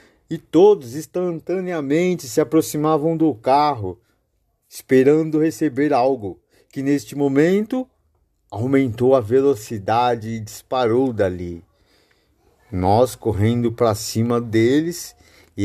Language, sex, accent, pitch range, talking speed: Portuguese, male, Brazilian, 100-150 Hz, 95 wpm